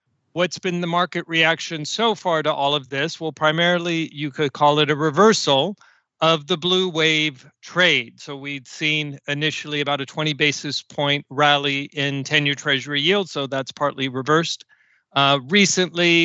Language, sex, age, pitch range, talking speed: English, male, 40-59, 145-165 Hz, 165 wpm